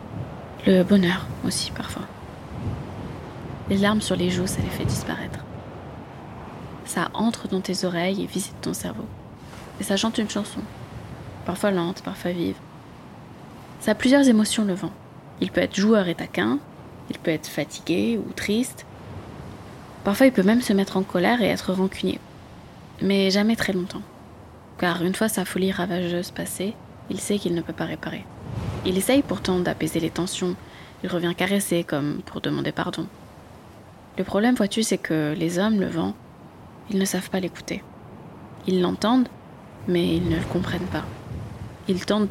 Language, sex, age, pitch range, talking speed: French, female, 20-39, 175-205 Hz, 165 wpm